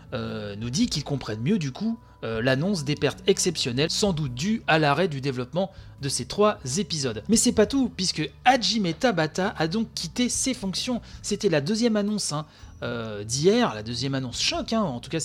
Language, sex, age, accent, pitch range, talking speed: French, male, 30-49, French, 130-205 Hz, 200 wpm